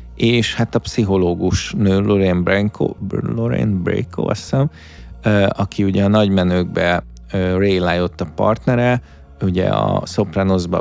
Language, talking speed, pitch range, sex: Hungarian, 100 wpm, 90-105 Hz, male